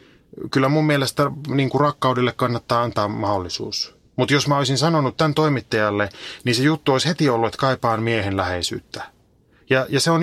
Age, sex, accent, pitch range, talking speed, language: 30-49, male, native, 110-145 Hz, 165 wpm, Finnish